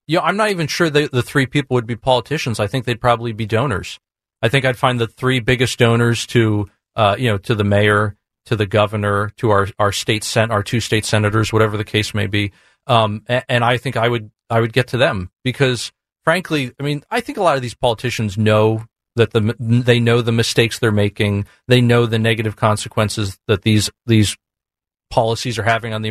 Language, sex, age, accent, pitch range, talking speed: English, male, 40-59, American, 110-145 Hz, 225 wpm